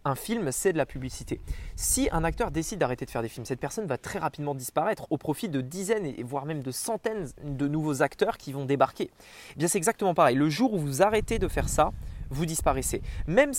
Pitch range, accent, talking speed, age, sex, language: 145-205 Hz, French, 230 wpm, 20-39, male, French